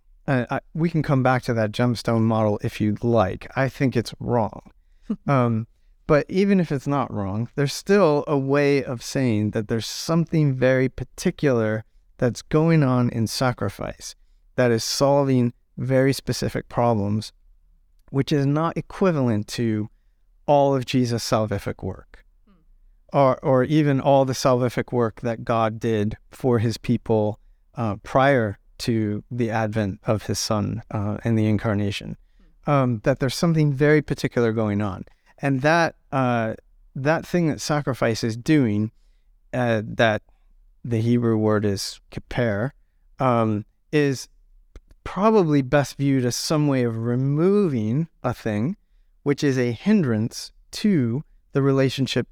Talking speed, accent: 140 wpm, American